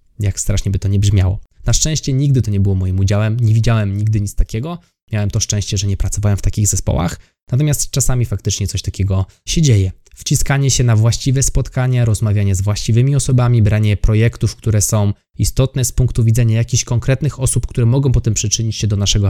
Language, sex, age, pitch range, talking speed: Polish, male, 20-39, 105-125 Hz, 195 wpm